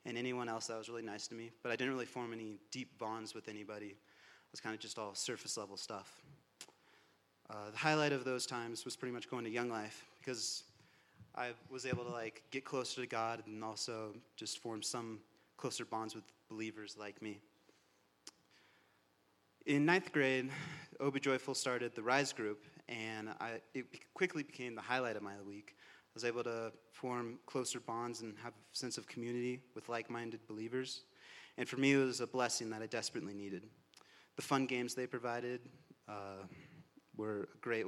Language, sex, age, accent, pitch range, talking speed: English, male, 30-49, American, 110-130 Hz, 185 wpm